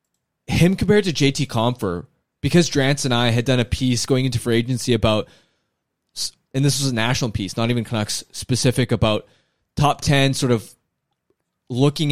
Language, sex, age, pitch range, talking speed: English, male, 20-39, 120-150 Hz, 170 wpm